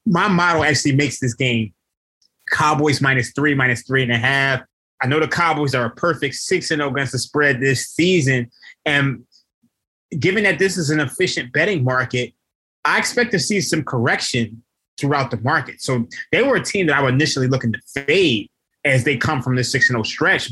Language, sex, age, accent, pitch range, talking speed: English, male, 20-39, American, 130-170 Hz, 200 wpm